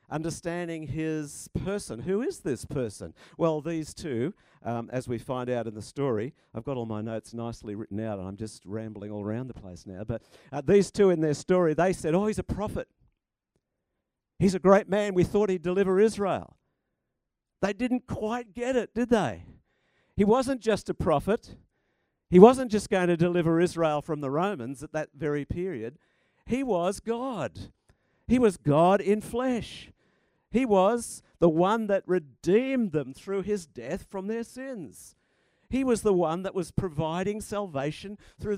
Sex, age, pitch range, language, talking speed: male, 50-69, 135-200 Hz, English, 175 wpm